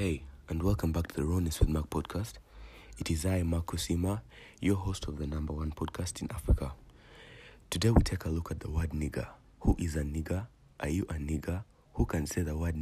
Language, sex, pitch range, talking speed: English, male, 80-95 Hz, 215 wpm